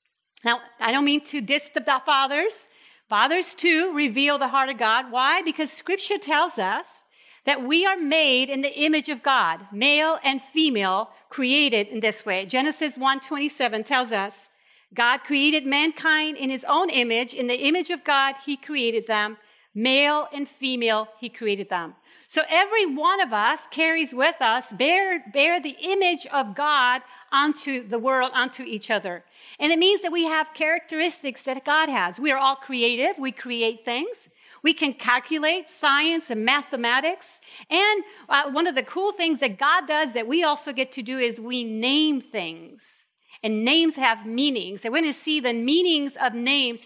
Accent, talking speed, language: American, 175 wpm, English